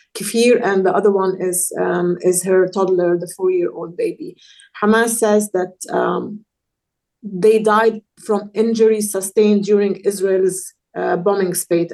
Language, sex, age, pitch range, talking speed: English, female, 30-49, 185-225 Hz, 145 wpm